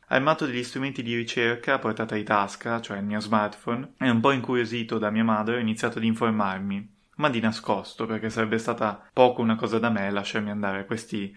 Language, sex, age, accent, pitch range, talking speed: Italian, male, 20-39, native, 105-120 Hz, 200 wpm